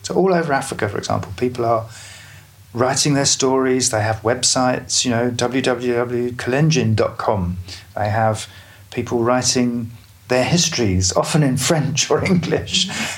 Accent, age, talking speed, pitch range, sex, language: British, 40-59, 130 wpm, 105-125 Hz, male, English